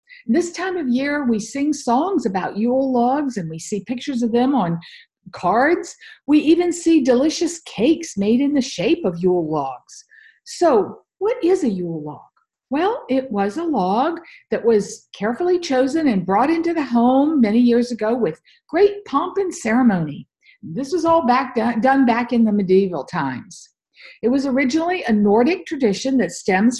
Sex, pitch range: female, 210-325 Hz